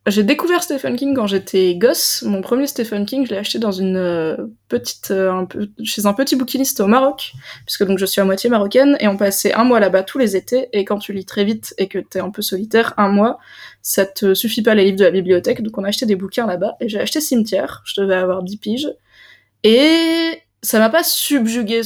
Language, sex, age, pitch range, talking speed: French, female, 20-39, 195-230 Hz, 235 wpm